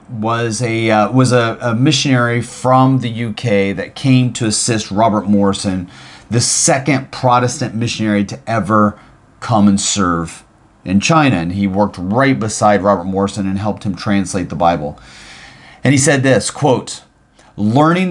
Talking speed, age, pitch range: 150 wpm, 30-49, 105-135 Hz